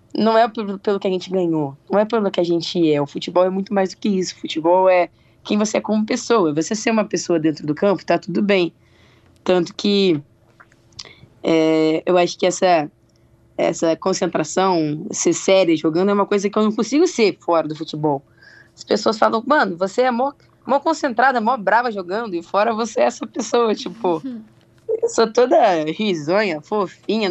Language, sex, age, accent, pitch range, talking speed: Portuguese, female, 20-39, Brazilian, 160-215 Hz, 190 wpm